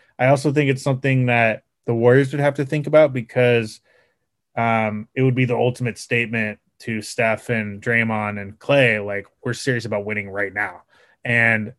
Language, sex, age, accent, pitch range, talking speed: English, male, 20-39, American, 110-130 Hz, 180 wpm